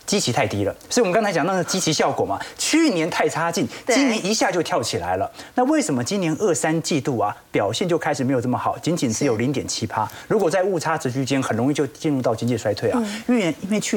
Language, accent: Chinese, native